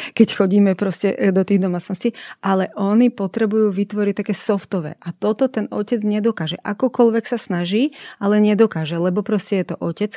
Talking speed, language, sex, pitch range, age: 160 wpm, Slovak, female, 175-210 Hz, 30-49